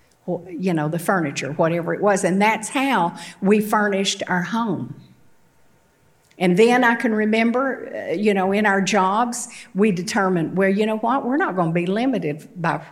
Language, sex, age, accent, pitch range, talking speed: English, female, 50-69, American, 170-210 Hz, 175 wpm